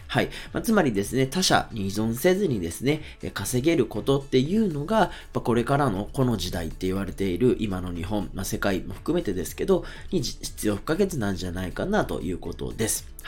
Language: Japanese